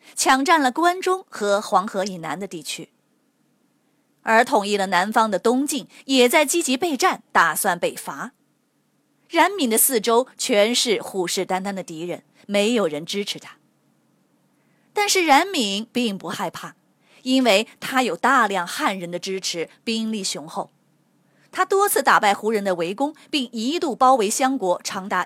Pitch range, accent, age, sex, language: 195-280 Hz, native, 20-39, female, Chinese